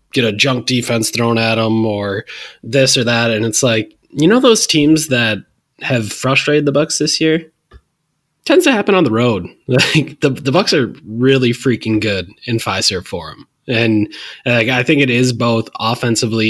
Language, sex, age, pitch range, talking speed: English, male, 20-39, 115-135 Hz, 180 wpm